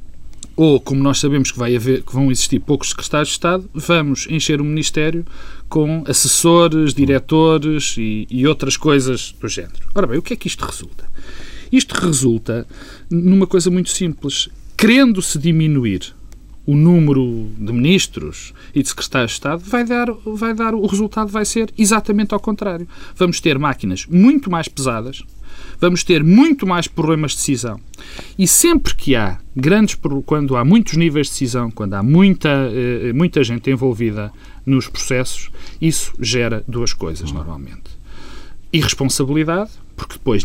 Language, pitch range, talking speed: Portuguese, 115-175 Hz, 145 wpm